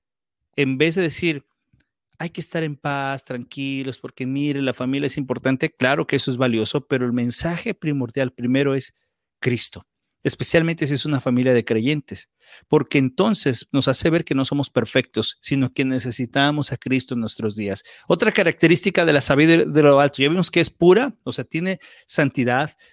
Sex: male